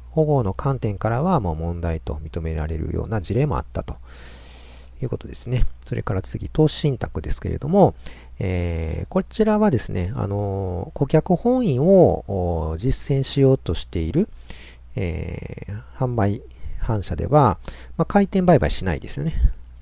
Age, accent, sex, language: 40-59, native, male, Japanese